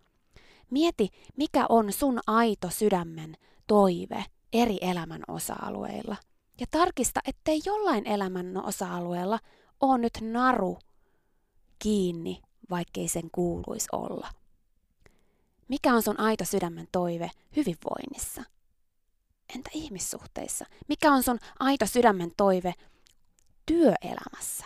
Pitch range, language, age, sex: 185-270 Hz, Finnish, 20-39, female